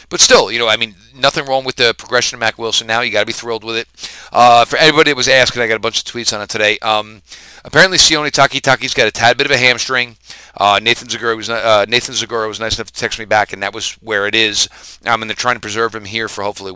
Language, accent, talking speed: English, American, 285 wpm